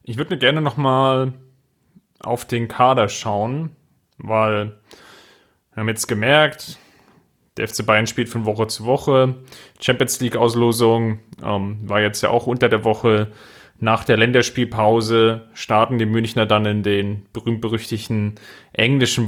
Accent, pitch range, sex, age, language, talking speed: German, 110-130 Hz, male, 30-49, German, 130 wpm